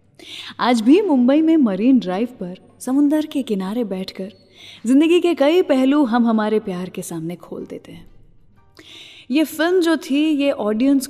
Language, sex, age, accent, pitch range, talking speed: English, female, 20-39, Indian, 200-275 Hz, 155 wpm